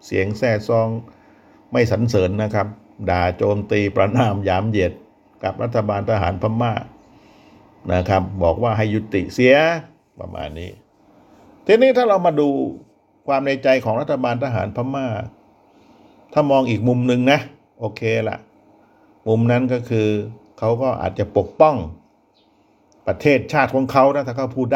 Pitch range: 100-125 Hz